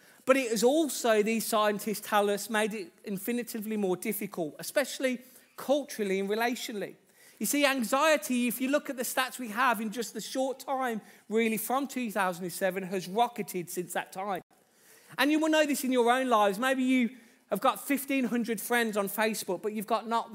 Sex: male